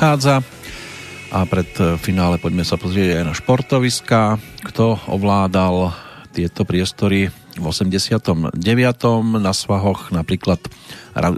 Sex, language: male, Slovak